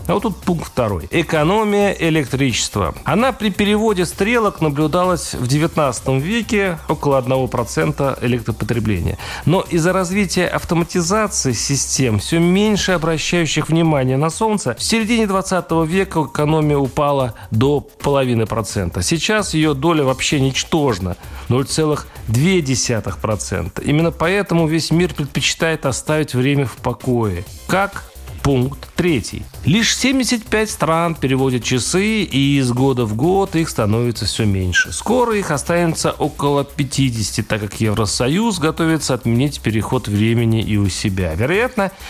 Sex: male